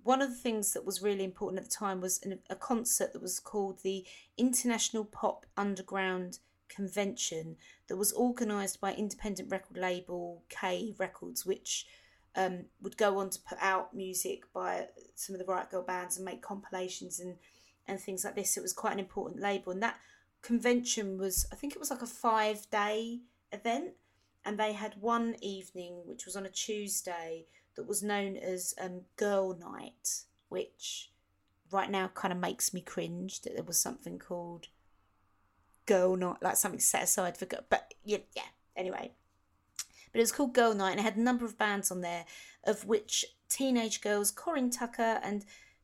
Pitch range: 185-220 Hz